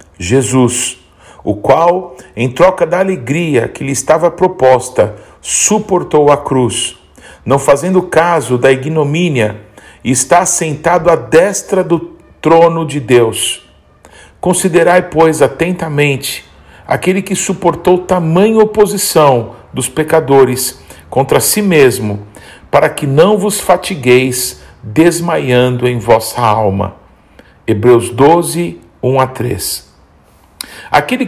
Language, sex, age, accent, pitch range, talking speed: Portuguese, male, 50-69, Brazilian, 125-175 Hz, 105 wpm